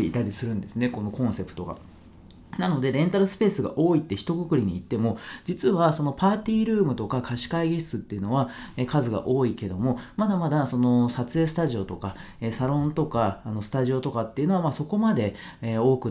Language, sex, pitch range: Japanese, male, 110-170 Hz